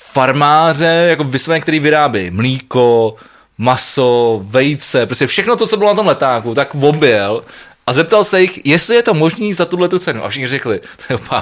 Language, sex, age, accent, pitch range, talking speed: Czech, male, 20-39, native, 140-180 Hz, 185 wpm